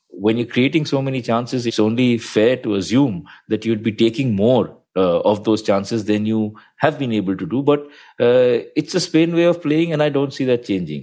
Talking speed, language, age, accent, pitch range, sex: 225 wpm, English, 50-69, Indian, 120-150 Hz, male